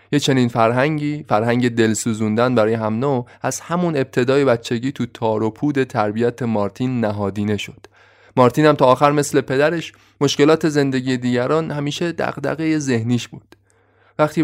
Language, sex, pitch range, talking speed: Persian, male, 115-145 Hz, 135 wpm